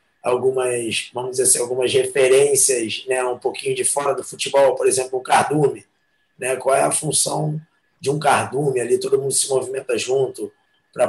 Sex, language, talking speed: male, Portuguese, 175 wpm